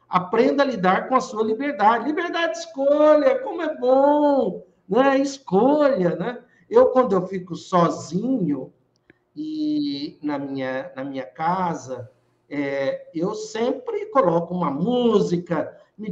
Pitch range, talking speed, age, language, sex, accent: 175-270 Hz, 125 wpm, 60-79, Portuguese, male, Brazilian